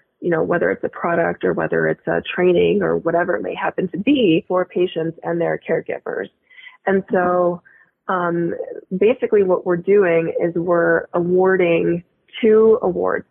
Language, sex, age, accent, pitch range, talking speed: English, female, 20-39, American, 170-220 Hz, 160 wpm